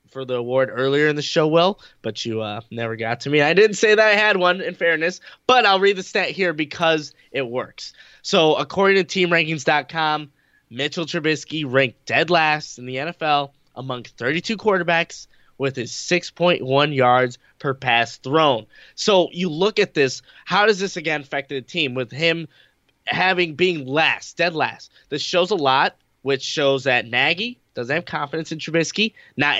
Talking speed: 180 wpm